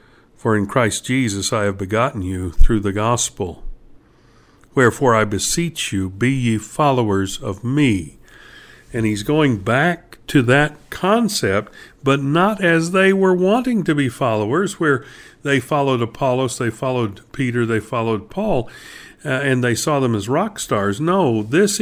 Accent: American